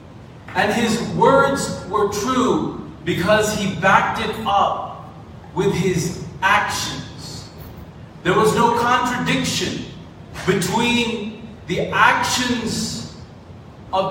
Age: 40-59